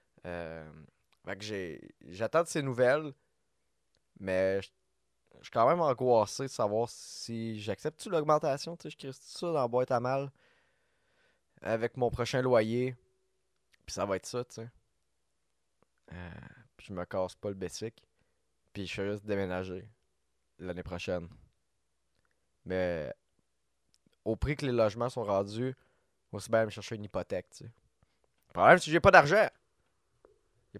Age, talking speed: 20-39, 160 wpm